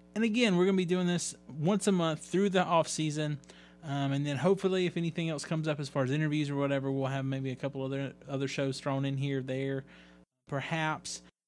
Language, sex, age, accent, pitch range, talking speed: English, male, 20-39, American, 135-170 Hz, 230 wpm